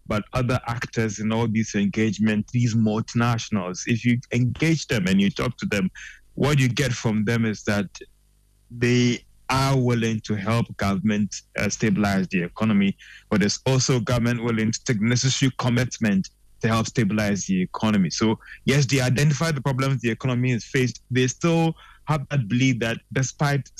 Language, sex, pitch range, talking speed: English, male, 115-135 Hz, 165 wpm